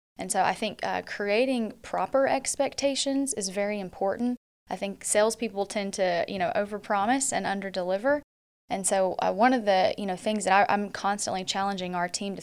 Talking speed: 185 wpm